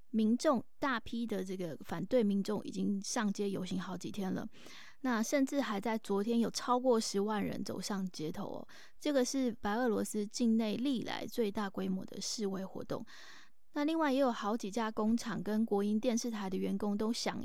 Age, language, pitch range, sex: 20-39, Chinese, 200-250 Hz, female